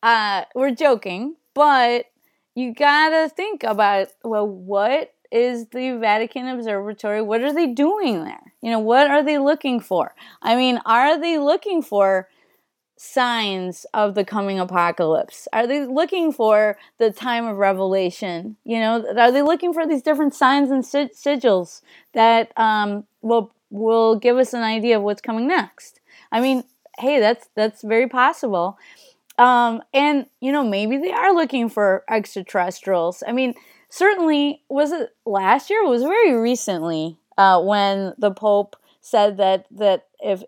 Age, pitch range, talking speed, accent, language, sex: 20-39, 205-280 Hz, 155 wpm, American, English, female